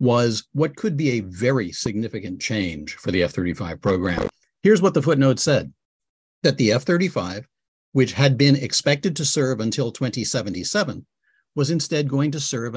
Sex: male